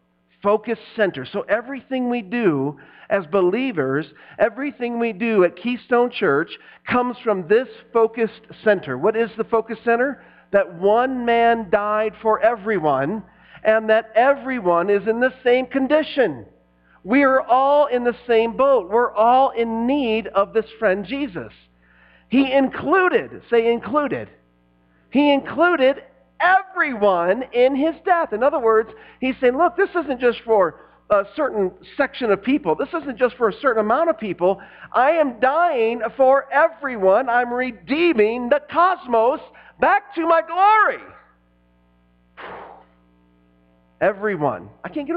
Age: 50-69